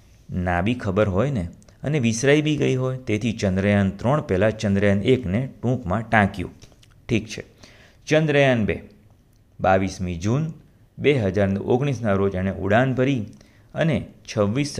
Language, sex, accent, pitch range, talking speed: Gujarati, male, native, 100-125 Hz, 105 wpm